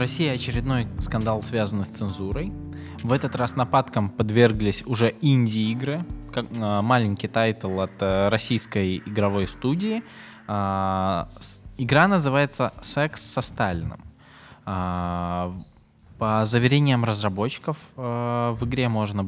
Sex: male